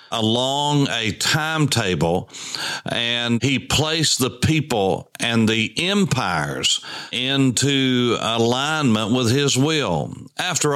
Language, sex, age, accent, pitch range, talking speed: English, male, 60-79, American, 105-130 Hz, 95 wpm